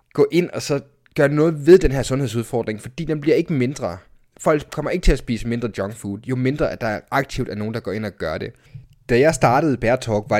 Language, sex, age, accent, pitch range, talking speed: Danish, male, 20-39, native, 120-140 Hz, 240 wpm